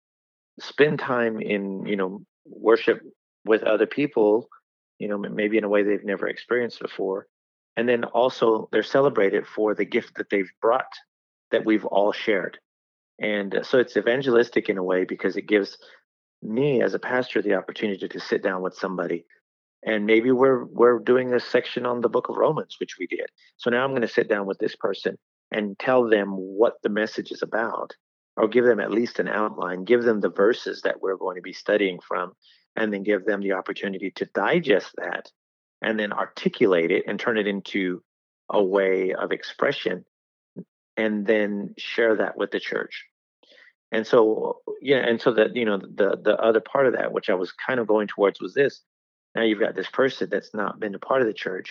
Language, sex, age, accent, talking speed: English, male, 30-49, American, 200 wpm